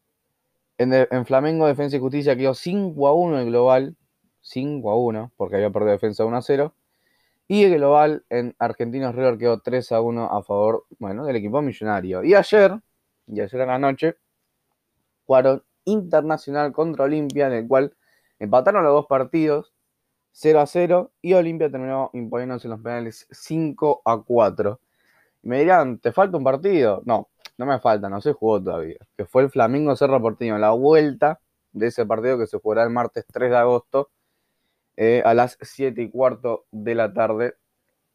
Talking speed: 175 wpm